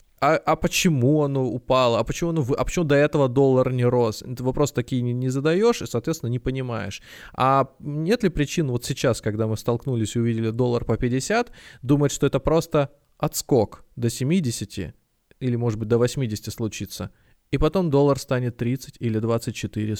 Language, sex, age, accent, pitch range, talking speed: Russian, male, 20-39, native, 115-155 Hz, 175 wpm